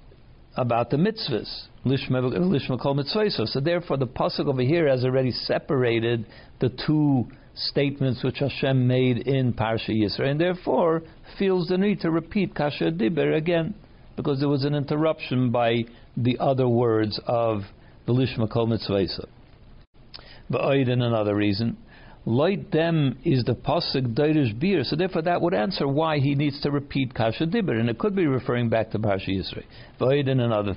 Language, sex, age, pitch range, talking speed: English, male, 60-79, 120-150 Hz, 150 wpm